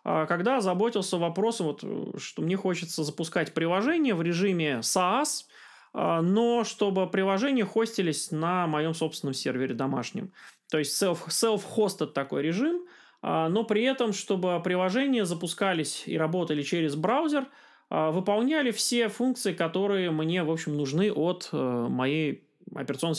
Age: 20-39